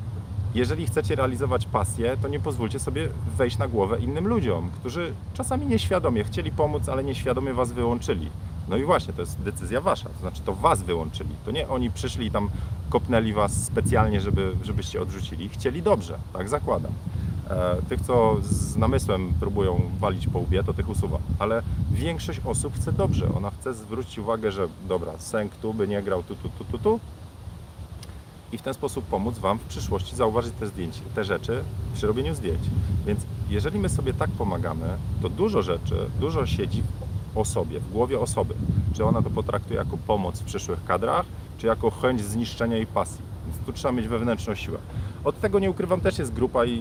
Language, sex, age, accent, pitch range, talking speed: Polish, male, 40-59, native, 95-115 Hz, 180 wpm